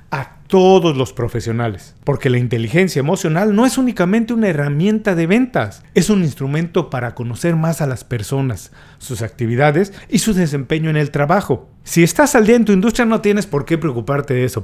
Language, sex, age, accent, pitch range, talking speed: Spanish, male, 40-59, Mexican, 130-190 Hz, 190 wpm